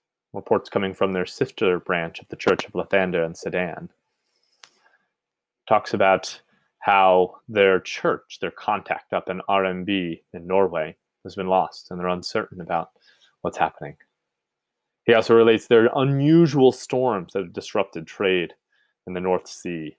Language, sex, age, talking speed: English, male, 30-49, 145 wpm